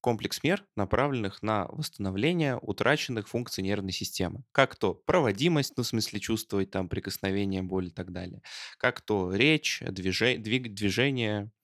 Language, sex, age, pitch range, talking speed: Russian, male, 20-39, 95-125 Hz, 130 wpm